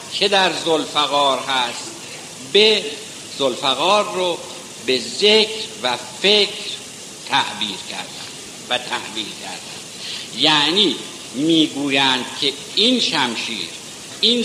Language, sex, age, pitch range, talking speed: Persian, male, 60-79, 135-210 Hz, 90 wpm